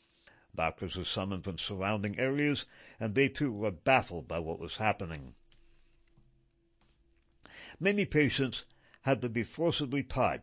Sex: male